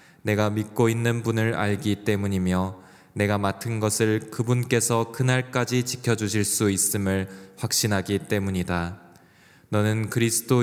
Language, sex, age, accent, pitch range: Korean, male, 20-39, native, 100-115 Hz